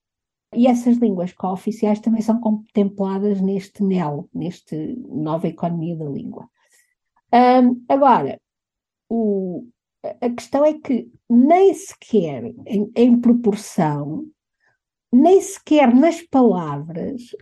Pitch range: 200-250 Hz